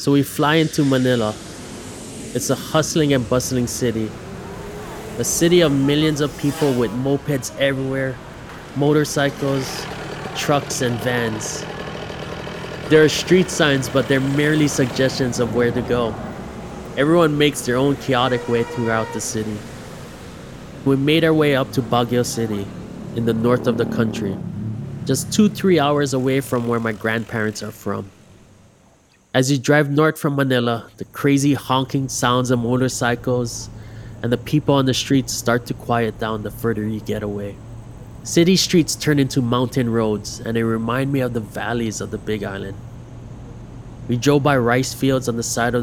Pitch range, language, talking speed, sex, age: 115-140 Hz, English, 160 wpm, male, 20-39